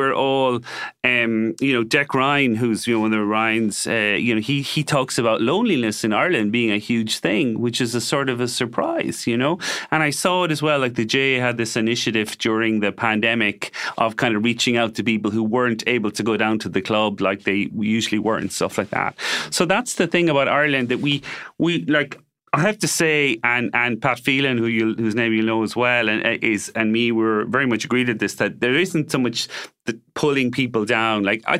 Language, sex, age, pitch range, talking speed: English, male, 30-49, 110-140 Hz, 235 wpm